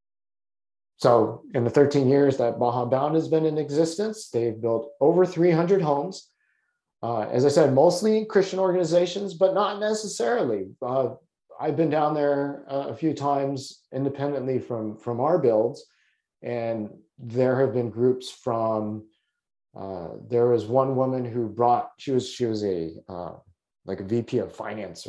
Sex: male